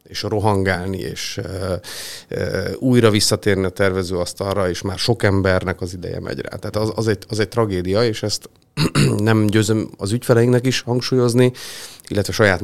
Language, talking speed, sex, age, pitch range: Hungarian, 145 wpm, male, 30-49, 95-110 Hz